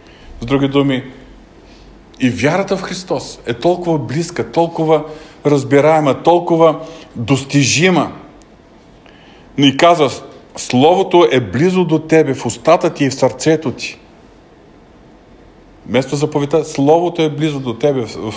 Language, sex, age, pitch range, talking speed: Bulgarian, male, 50-69, 115-155 Hz, 120 wpm